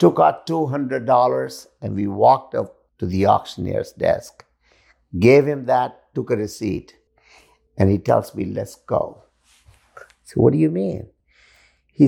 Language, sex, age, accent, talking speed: English, male, 50-69, Indian, 145 wpm